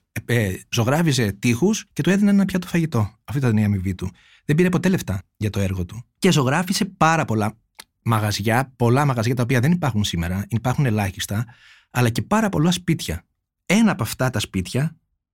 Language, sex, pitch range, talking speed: Greek, male, 115-175 Hz, 175 wpm